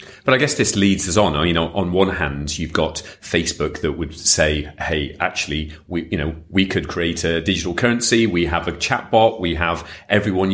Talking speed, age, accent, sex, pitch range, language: 210 wpm, 40-59, British, male, 80-95 Hz, English